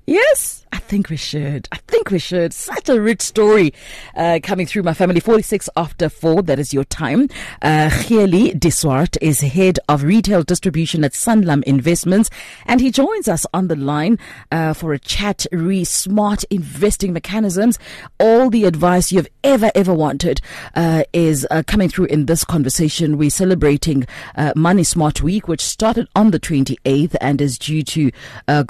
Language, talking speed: English, 170 wpm